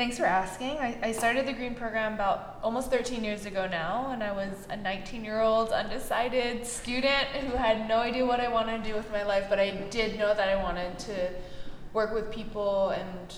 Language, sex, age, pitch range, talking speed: English, female, 20-39, 175-210 Hz, 205 wpm